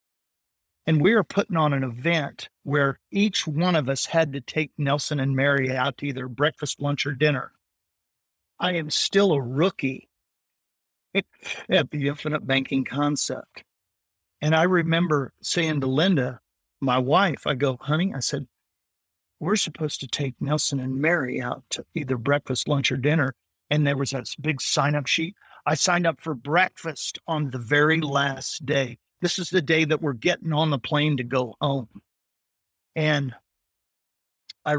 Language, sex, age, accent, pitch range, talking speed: English, male, 50-69, American, 130-160 Hz, 165 wpm